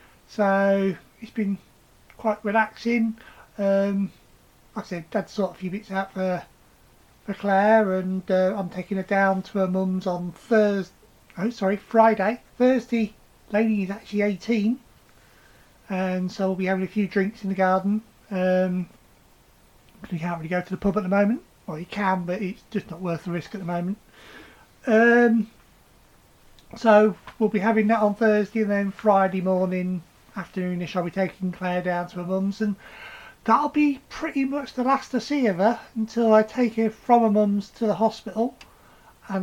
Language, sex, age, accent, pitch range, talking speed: English, male, 30-49, British, 185-225 Hz, 175 wpm